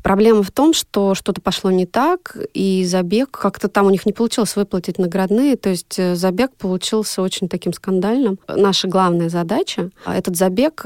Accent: native